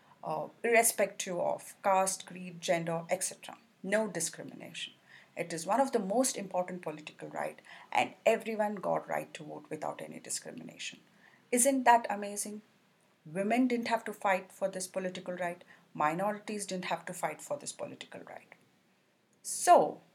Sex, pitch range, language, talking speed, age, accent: female, 180-240 Hz, English, 145 wpm, 40-59, Indian